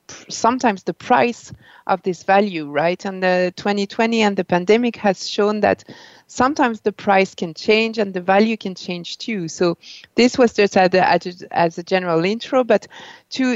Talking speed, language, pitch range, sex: 165 wpm, English, 185-230 Hz, female